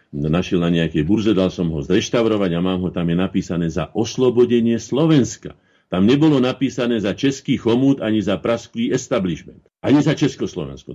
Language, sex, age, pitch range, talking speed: Slovak, male, 50-69, 85-110 Hz, 165 wpm